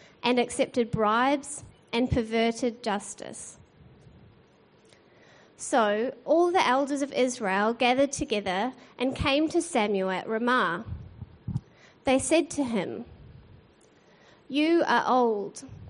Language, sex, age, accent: English, female, 30-49, Australian